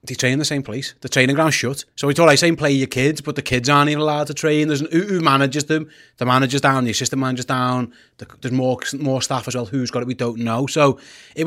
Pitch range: 125-150 Hz